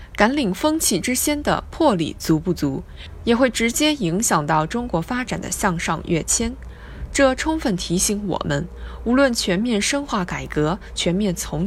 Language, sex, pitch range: Chinese, female, 160-250 Hz